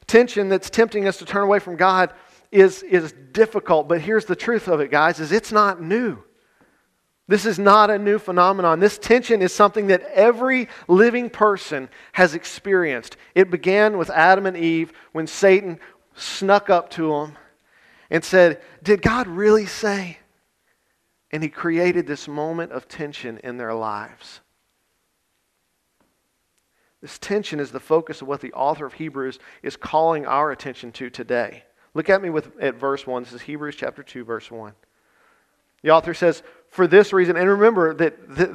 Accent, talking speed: American, 170 wpm